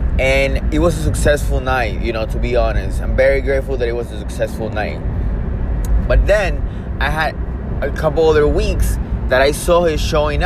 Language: English